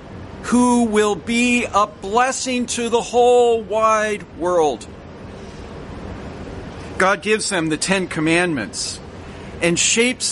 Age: 40-59